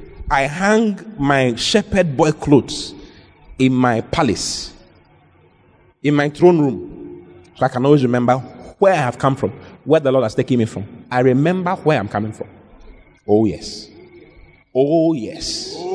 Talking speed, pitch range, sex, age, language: 150 wpm, 125-195 Hz, male, 30-49, English